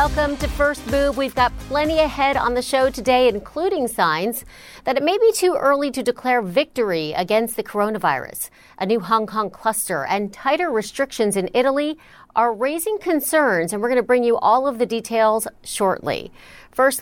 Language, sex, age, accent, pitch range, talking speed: English, female, 40-59, American, 205-260 Hz, 180 wpm